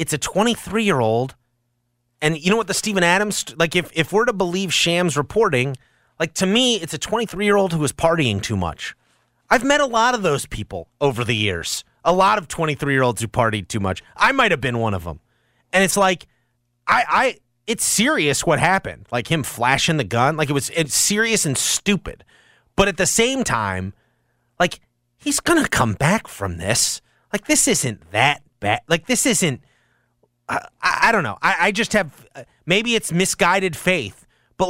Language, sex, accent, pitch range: English, male, American, 120-200 Hz